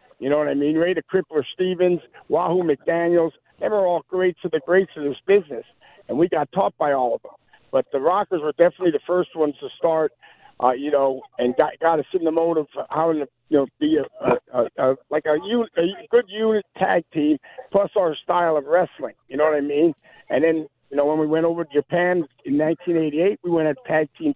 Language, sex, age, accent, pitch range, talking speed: English, male, 60-79, American, 145-180 Hz, 215 wpm